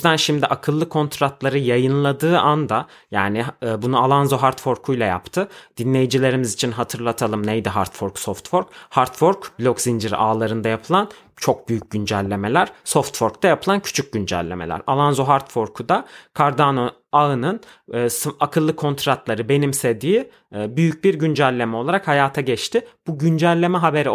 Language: Turkish